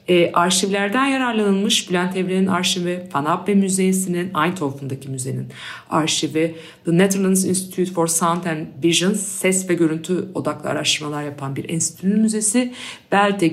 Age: 50-69